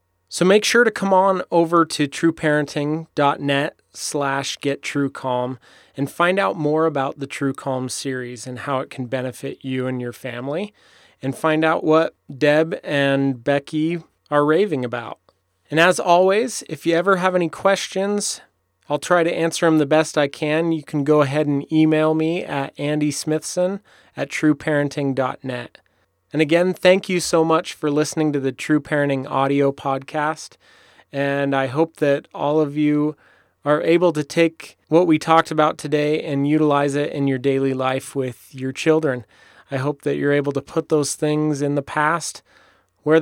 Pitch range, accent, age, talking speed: 140-160 Hz, American, 30-49, 170 wpm